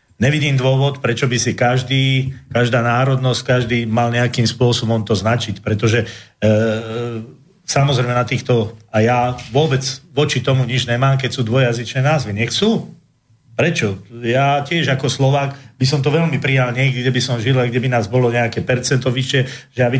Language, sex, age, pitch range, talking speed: Slovak, male, 40-59, 115-135 Hz, 165 wpm